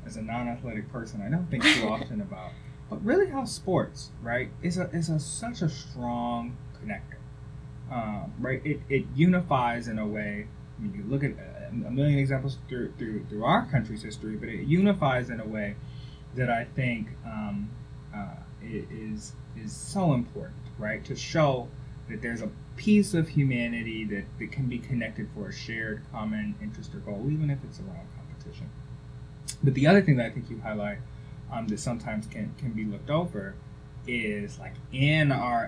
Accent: American